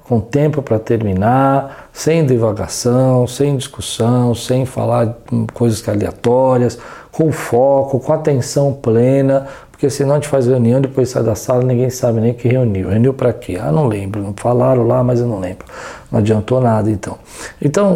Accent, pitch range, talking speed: Brazilian, 115-140 Hz, 170 wpm